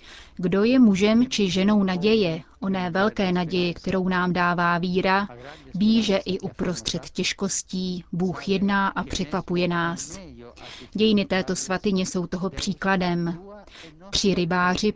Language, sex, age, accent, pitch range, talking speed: Czech, female, 30-49, native, 180-205 Hz, 120 wpm